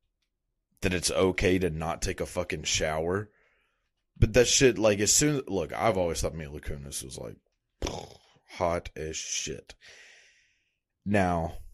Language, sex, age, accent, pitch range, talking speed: English, male, 30-49, American, 80-105 Hz, 145 wpm